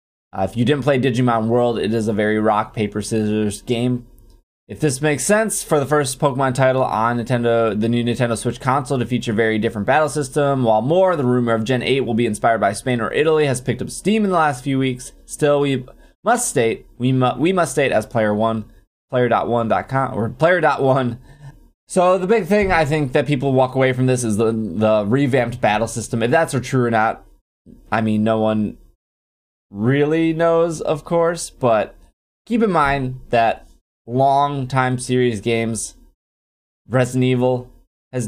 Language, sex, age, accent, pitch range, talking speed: English, male, 20-39, American, 105-130 Hz, 185 wpm